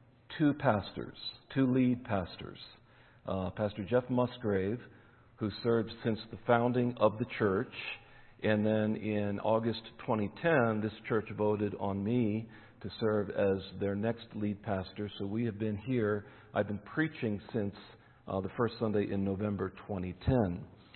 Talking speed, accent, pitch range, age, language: 145 wpm, American, 110-130 Hz, 50-69, English